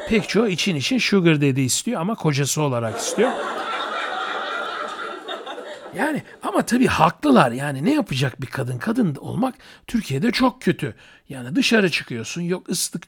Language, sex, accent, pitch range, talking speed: Turkish, male, native, 145-240 Hz, 140 wpm